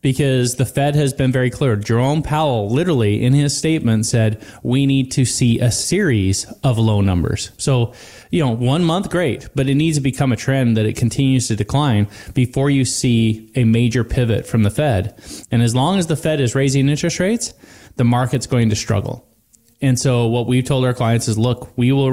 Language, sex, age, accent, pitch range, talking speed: English, male, 30-49, American, 110-135 Hz, 205 wpm